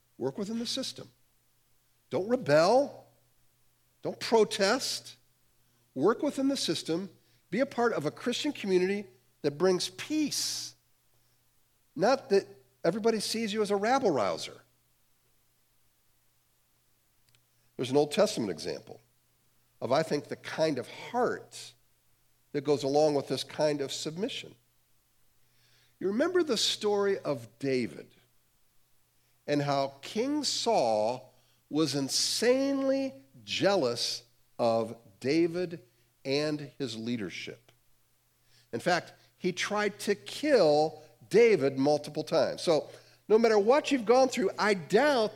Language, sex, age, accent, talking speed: English, male, 50-69, American, 115 wpm